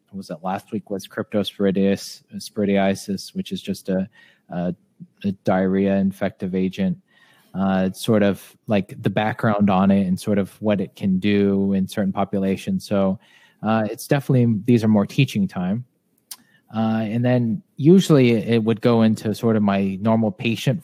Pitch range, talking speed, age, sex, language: 105-130 Hz, 165 wpm, 20-39, male, English